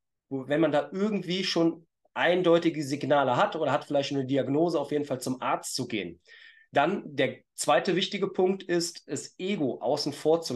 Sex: male